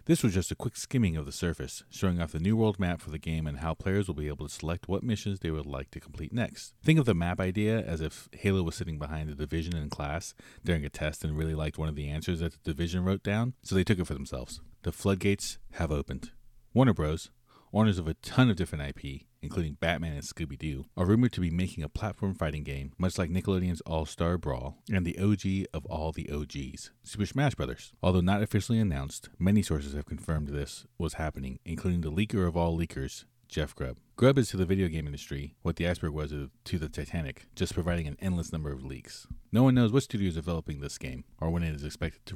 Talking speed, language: 235 wpm, English